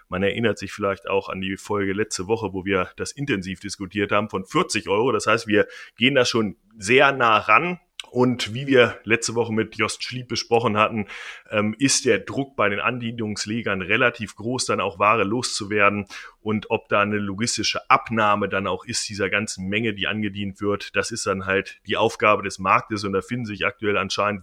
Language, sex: German, male